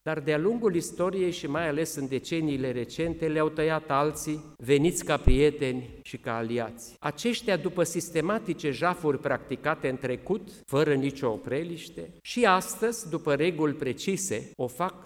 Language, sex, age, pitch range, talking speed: English, male, 50-69, 135-175 Hz, 145 wpm